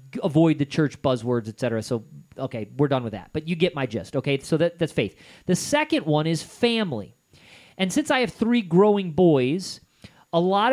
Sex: male